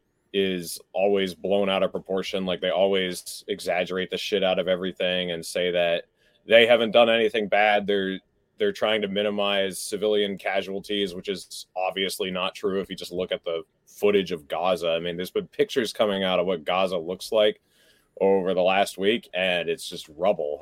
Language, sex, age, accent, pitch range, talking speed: English, male, 30-49, American, 90-110 Hz, 185 wpm